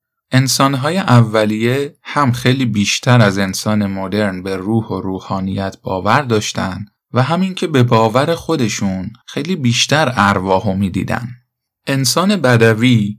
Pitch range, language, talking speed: 100-125 Hz, Persian, 120 wpm